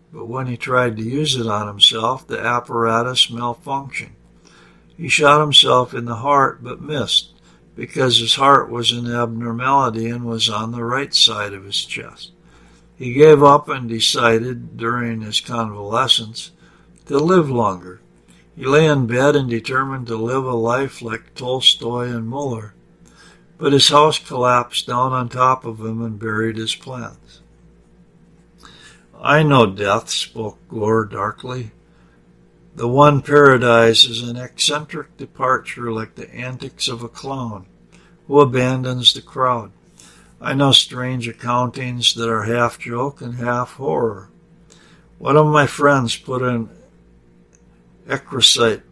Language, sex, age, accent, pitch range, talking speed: English, male, 60-79, American, 115-135 Hz, 140 wpm